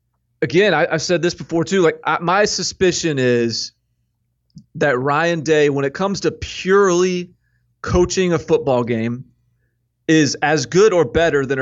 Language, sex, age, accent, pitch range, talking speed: English, male, 30-49, American, 125-160 Hz, 155 wpm